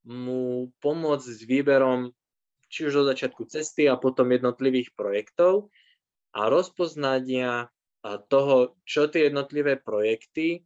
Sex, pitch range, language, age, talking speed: male, 120-145 Hz, Slovak, 20-39, 115 wpm